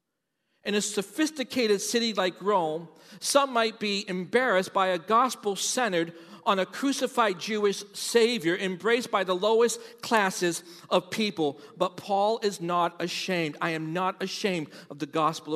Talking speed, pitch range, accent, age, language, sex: 145 wpm, 190-250 Hz, American, 50-69, English, male